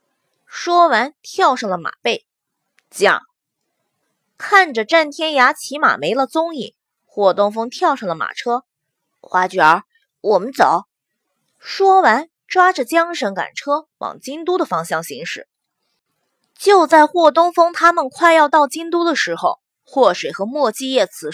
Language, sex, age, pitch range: Chinese, female, 20-39, 250-345 Hz